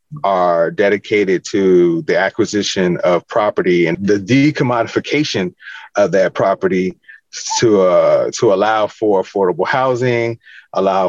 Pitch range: 95-115 Hz